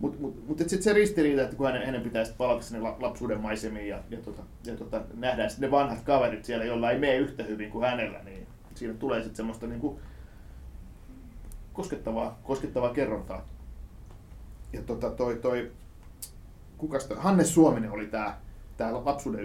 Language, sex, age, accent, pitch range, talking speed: Finnish, male, 30-49, native, 105-140 Hz, 155 wpm